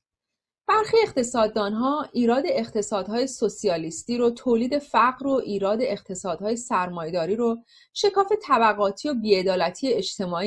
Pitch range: 195-260 Hz